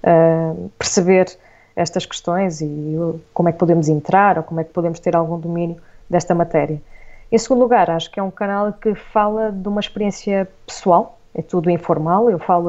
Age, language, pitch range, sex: 20-39, Portuguese, 170-210 Hz, female